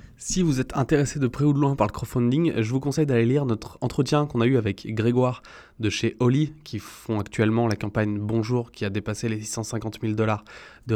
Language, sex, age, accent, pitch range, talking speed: French, male, 20-39, French, 105-125 Hz, 225 wpm